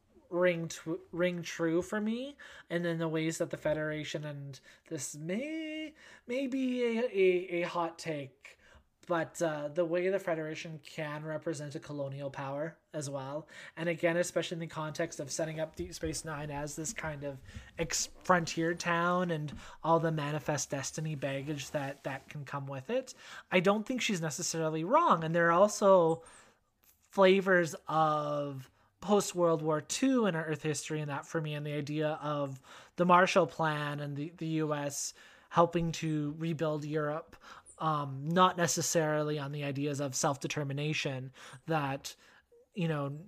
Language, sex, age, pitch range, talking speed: English, male, 20-39, 145-170 Hz, 160 wpm